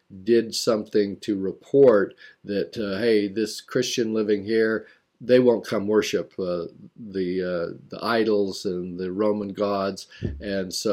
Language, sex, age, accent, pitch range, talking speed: English, male, 50-69, American, 100-115 Hz, 145 wpm